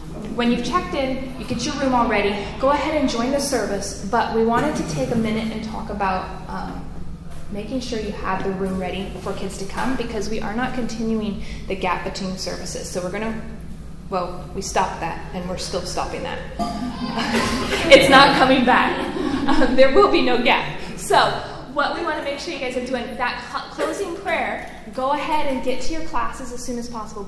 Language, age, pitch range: English, 10-29, 195-255 Hz